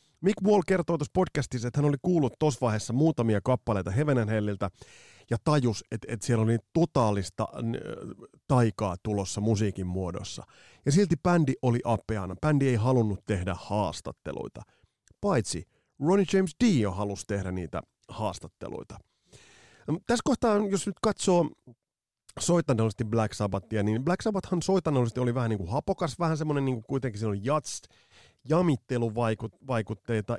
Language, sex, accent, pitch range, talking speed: Finnish, male, native, 105-145 Hz, 140 wpm